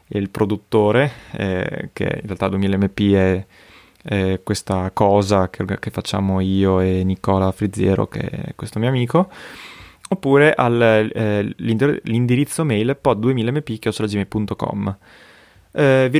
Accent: native